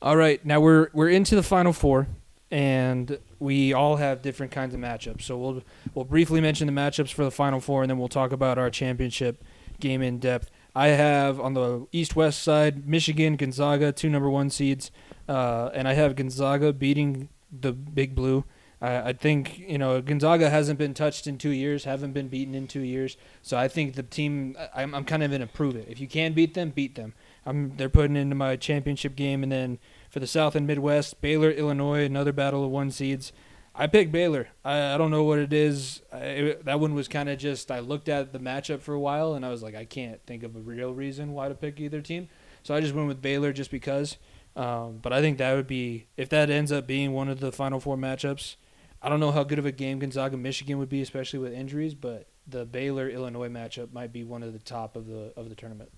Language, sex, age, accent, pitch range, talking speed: English, male, 20-39, American, 130-145 Hz, 230 wpm